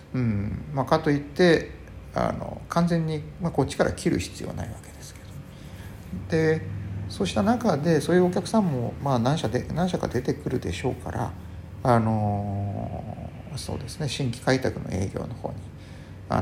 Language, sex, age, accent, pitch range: Japanese, male, 50-69, native, 100-140 Hz